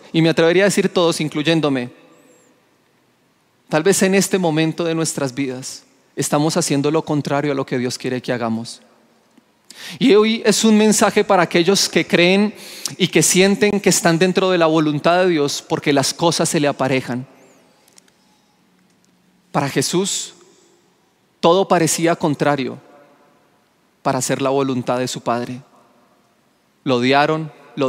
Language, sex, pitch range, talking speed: Spanish, male, 130-165 Hz, 145 wpm